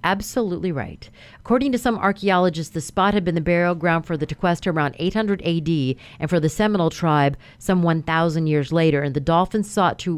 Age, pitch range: 40-59, 160-210 Hz